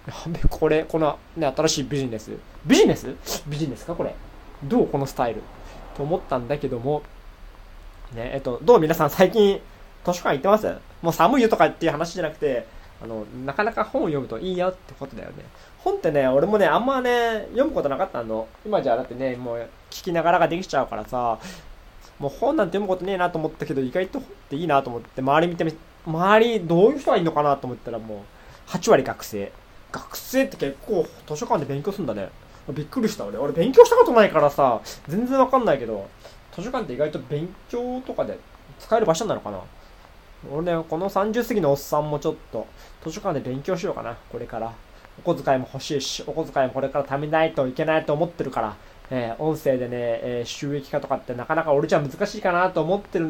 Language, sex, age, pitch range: Japanese, male, 20-39, 125-175 Hz